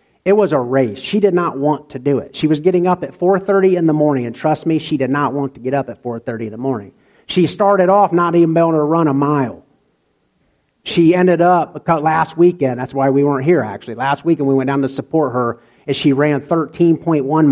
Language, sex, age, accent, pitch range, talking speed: English, male, 50-69, American, 130-170 Hz, 235 wpm